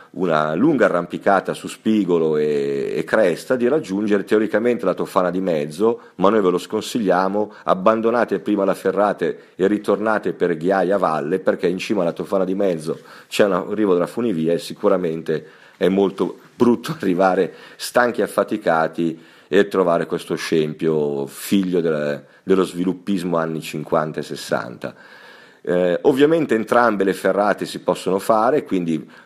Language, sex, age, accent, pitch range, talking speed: Italian, male, 40-59, native, 80-105 Hz, 145 wpm